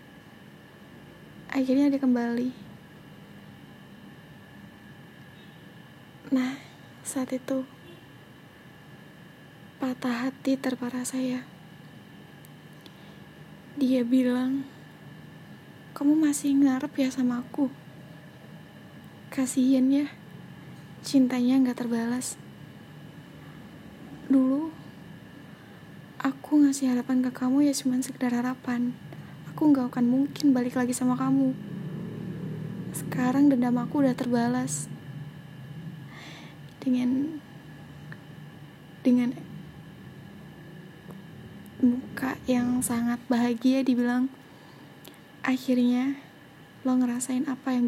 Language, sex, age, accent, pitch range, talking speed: Indonesian, female, 20-39, native, 240-265 Hz, 75 wpm